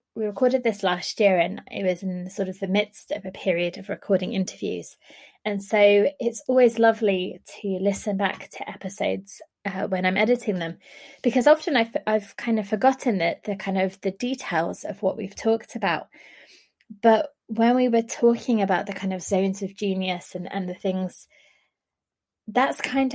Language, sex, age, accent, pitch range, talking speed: English, female, 20-39, British, 190-225 Hz, 180 wpm